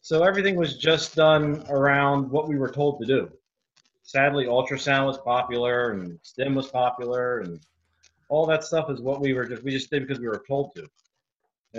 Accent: American